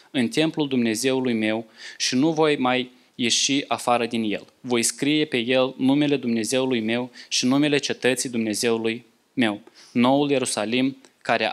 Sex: male